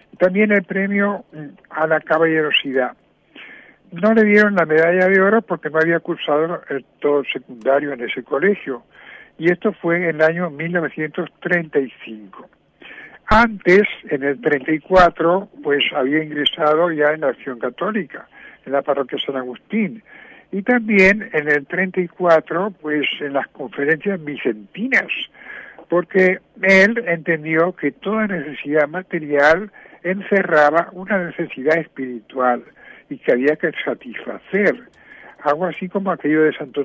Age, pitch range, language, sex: 60-79, 145-195 Hz, Spanish, male